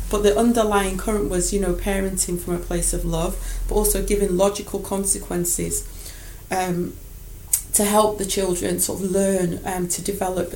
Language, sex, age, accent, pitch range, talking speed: English, female, 30-49, British, 175-205 Hz, 165 wpm